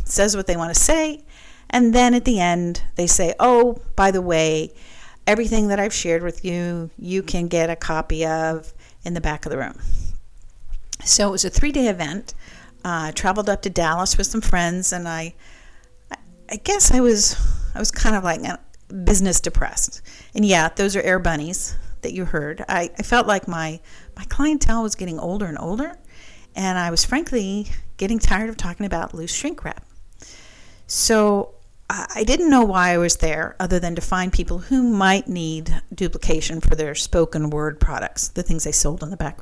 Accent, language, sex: American, English, female